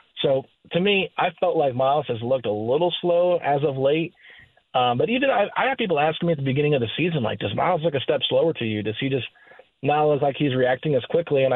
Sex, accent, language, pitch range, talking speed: male, American, English, 125-160 Hz, 260 wpm